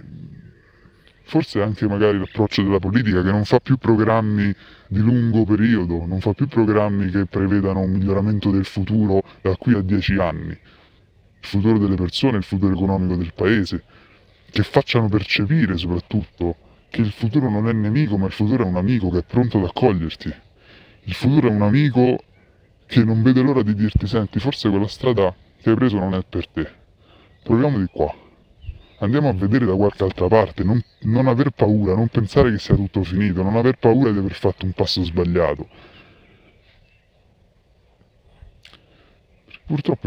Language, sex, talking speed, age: Italian, female, 165 wpm, 30-49